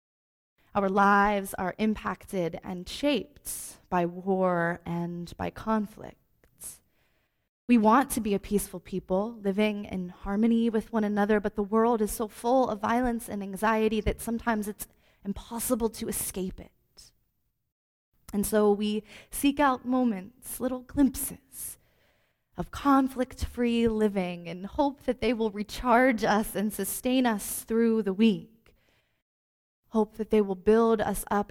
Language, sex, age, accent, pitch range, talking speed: English, female, 20-39, American, 195-230 Hz, 135 wpm